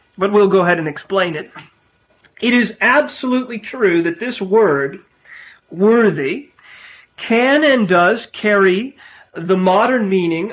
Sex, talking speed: male, 125 wpm